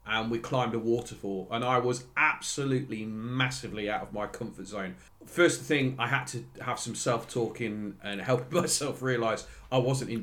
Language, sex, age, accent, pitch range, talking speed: English, male, 40-59, British, 110-135 Hz, 175 wpm